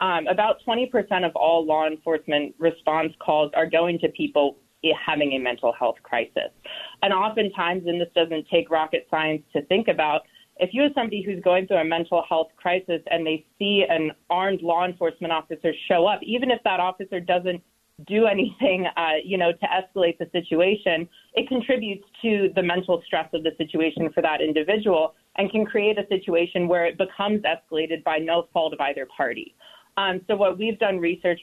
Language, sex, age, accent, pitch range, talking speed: English, female, 30-49, American, 160-185 Hz, 185 wpm